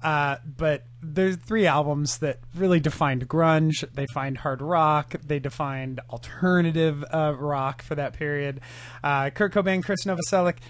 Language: English